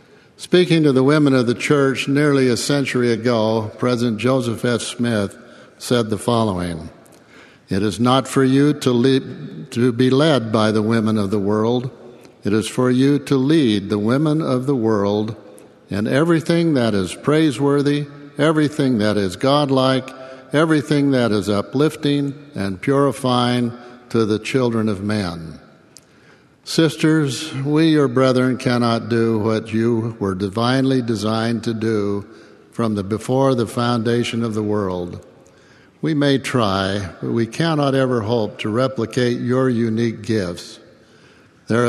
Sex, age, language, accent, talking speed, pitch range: male, 60-79, English, American, 140 wpm, 110-135 Hz